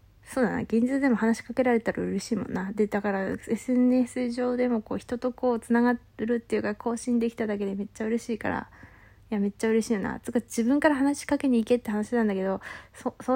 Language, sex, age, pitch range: Japanese, female, 20-39, 205-250 Hz